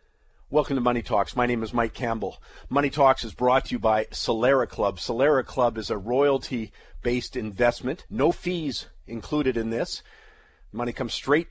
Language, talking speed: English, 165 wpm